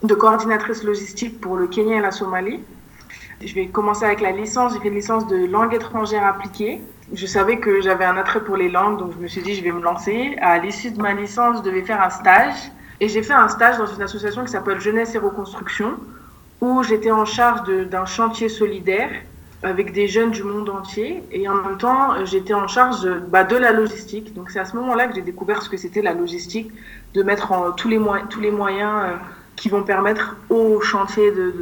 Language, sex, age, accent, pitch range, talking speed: French, female, 20-39, French, 190-225 Hz, 220 wpm